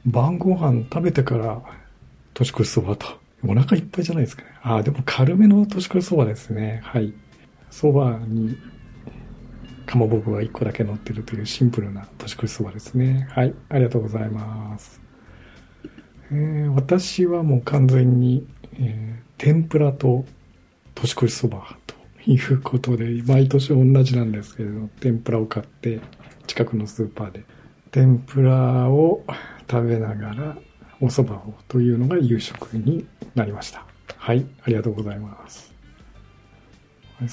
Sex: male